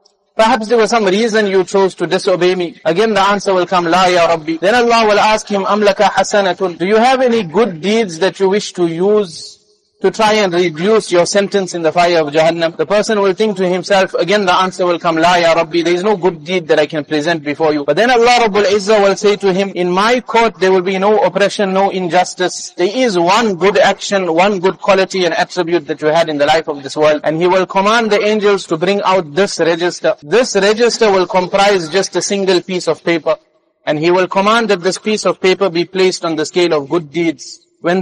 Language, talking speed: English, 235 wpm